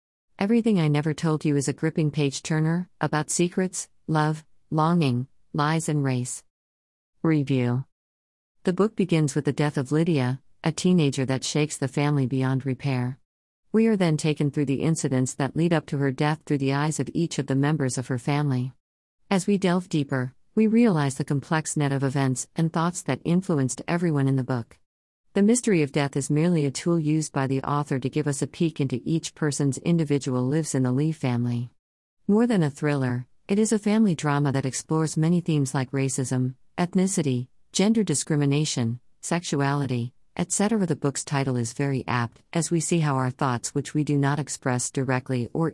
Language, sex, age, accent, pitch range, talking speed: English, female, 50-69, American, 130-160 Hz, 185 wpm